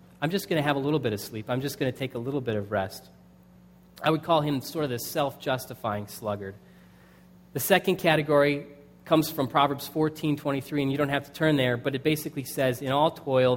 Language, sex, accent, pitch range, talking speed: English, male, American, 120-155 Hz, 225 wpm